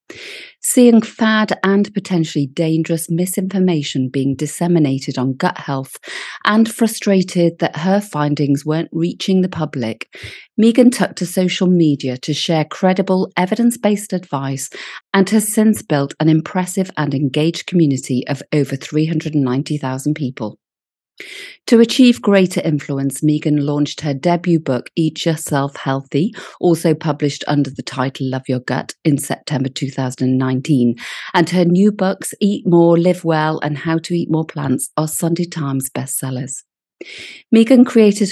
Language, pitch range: English, 140-185 Hz